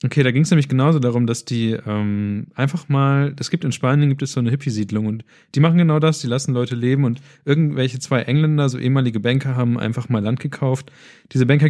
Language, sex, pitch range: German, male, 115-145 Hz